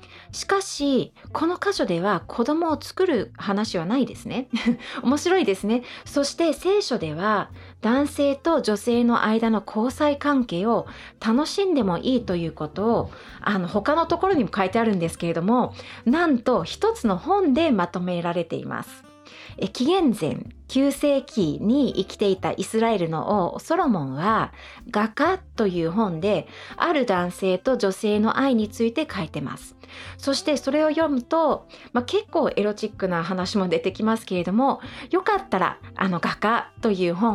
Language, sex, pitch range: English, female, 185-280 Hz